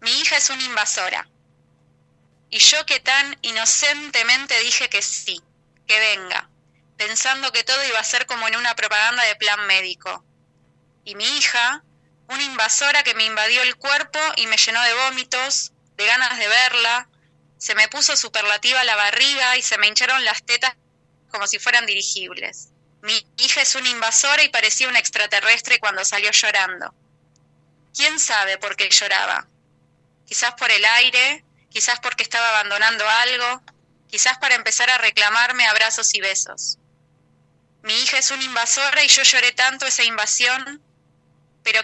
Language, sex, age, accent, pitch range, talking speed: Spanish, female, 20-39, Argentinian, 210-255 Hz, 155 wpm